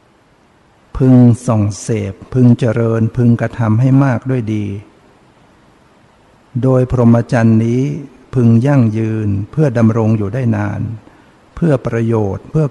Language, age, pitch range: Thai, 60-79, 110-125 Hz